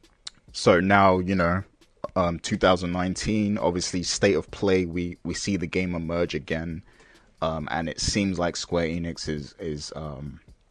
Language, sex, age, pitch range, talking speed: English, male, 20-39, 75-90 Hz, 150 wpm